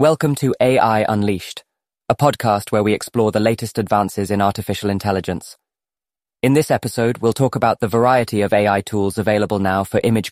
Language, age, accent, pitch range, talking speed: English, 20-39, British, 100-120 Hz, 175 wpm